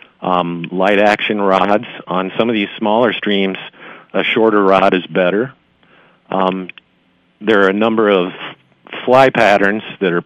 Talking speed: 145 wpm